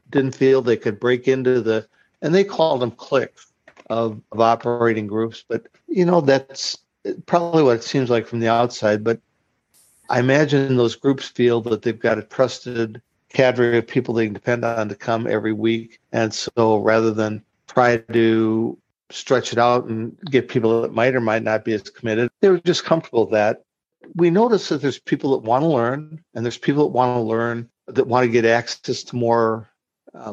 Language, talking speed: English, 200 wpm